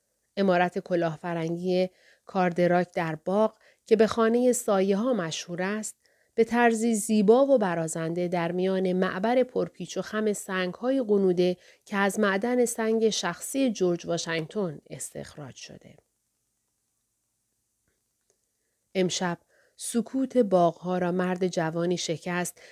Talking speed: 115 wpm